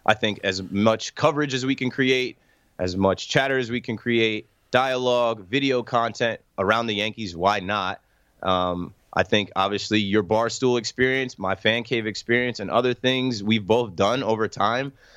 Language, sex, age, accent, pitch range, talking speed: English, male, 20-39, American, 100-120 Hz, 175 wpm